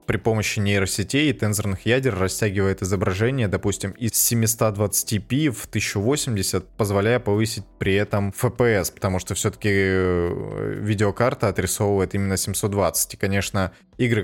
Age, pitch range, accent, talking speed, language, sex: 20-39, 95-115 Hz, native, 120 wpm, Russian, male